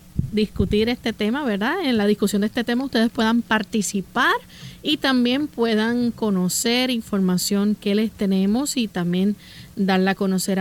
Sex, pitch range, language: female, 200-245 Hz, Spanish